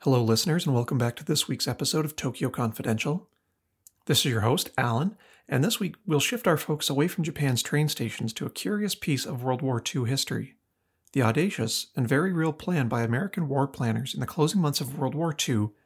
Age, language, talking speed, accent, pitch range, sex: 40-59, English, 210 wpm, American, 120-160 Hz, male